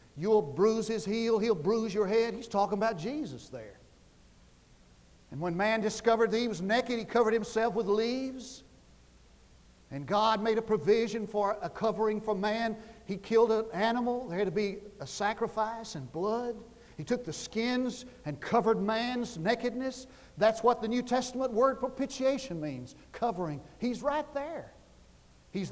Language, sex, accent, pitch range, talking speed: English, male, American, 200-240 Hz, 160 wpm